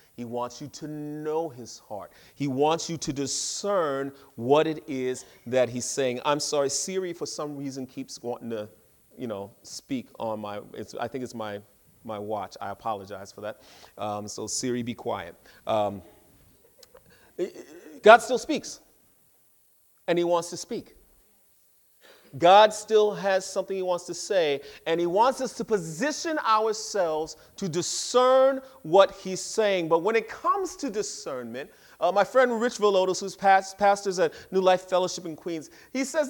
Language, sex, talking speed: English, male, 165 wpm